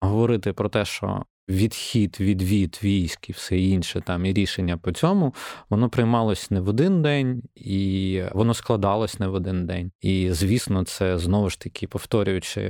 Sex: male